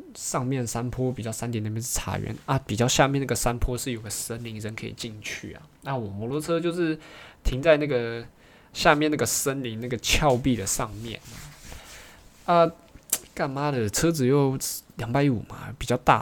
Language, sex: Chinese, male